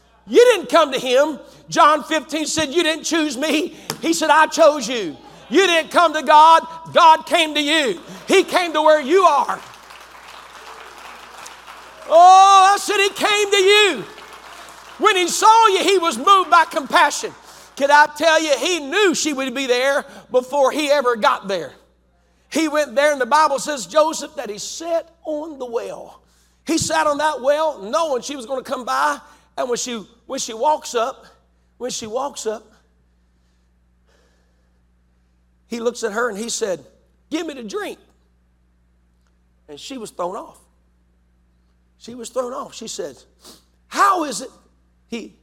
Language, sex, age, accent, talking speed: English, male, 50-69, American, 165 wpm